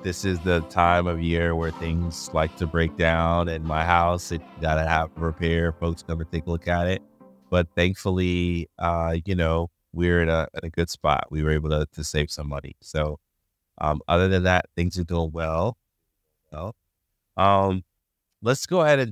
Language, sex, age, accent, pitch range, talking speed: English, male, 30-49, American, 80-95 Hz, 200 wpm